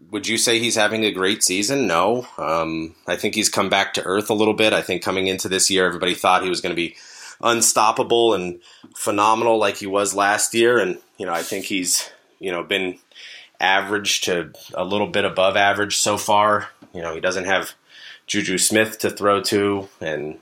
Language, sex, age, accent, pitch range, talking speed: English, male, 30-49, American, 95-115 Hz, 205 wpm